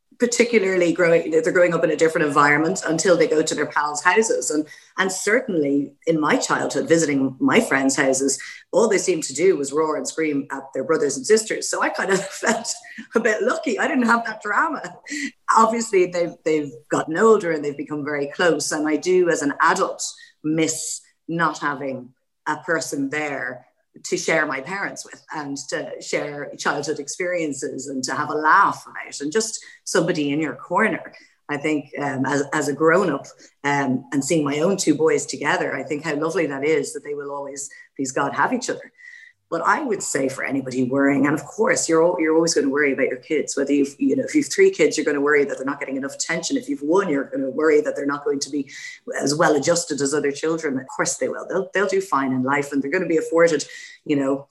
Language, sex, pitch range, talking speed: English, female, 145-215 Hz, 220 wpm